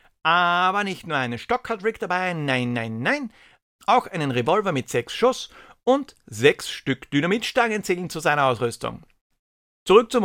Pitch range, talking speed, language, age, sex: 130-185 Hz, 160 wpm, German, 60-79, male